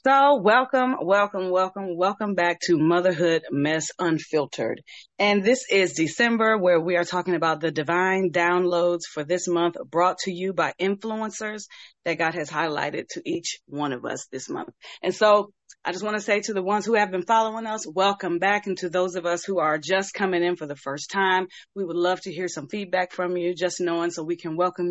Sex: female